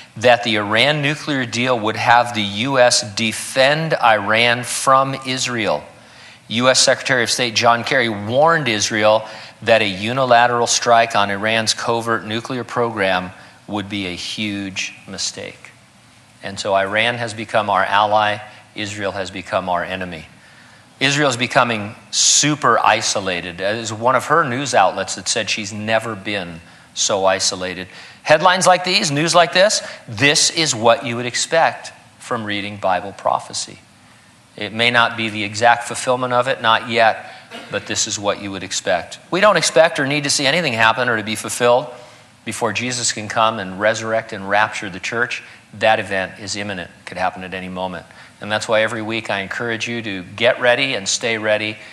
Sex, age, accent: male, 40-59, American